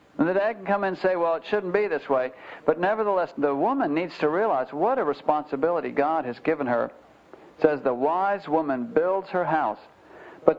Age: 60-79